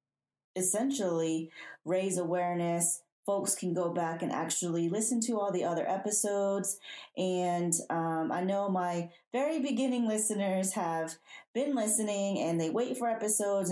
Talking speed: 135 wpm